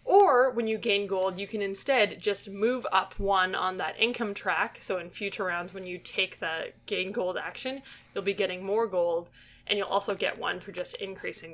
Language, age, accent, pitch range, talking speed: English, 20-39, American, 190-240 Hz, 210 wpm